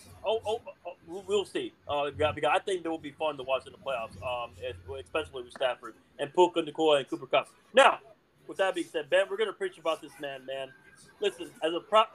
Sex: male